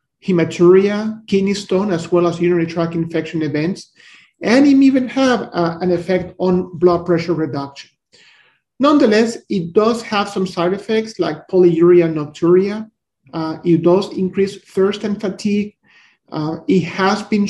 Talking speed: 145 wpm